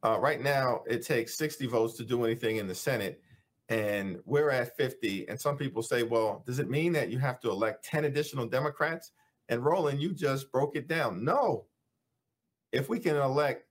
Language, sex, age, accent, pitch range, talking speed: English, male, 50-69, American, 115-150 Hz, 195 wpm